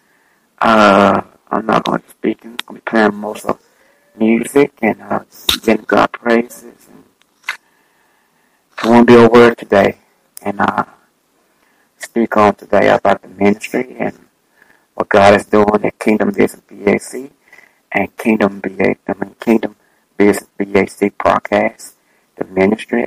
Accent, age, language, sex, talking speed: American, 60-79, English, male, 145 wpm